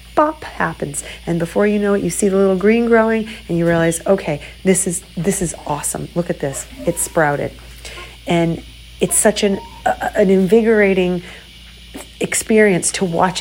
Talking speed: 165 wpm